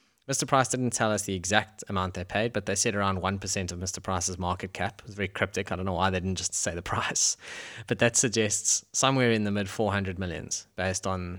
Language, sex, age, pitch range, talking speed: English, male, 20-39, 100-120 Hz, 235 wpm